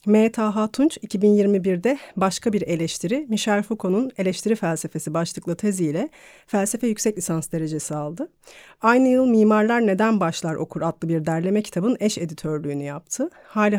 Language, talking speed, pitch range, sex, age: Turkish, 135 wpm, 165-215 Hz, female, 30-49